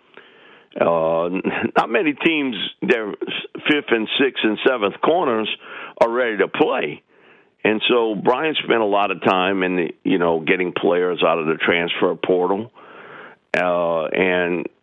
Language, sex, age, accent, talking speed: English, male, 50-69, American, 145 wpm